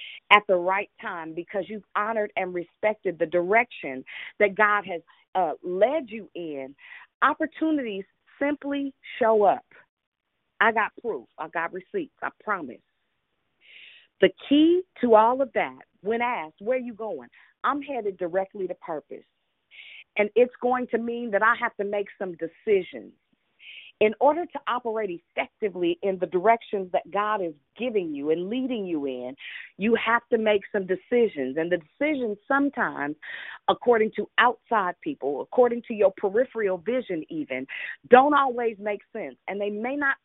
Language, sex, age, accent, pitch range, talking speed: English, female, 40-59, American, 190-250 Hz, 155 wpm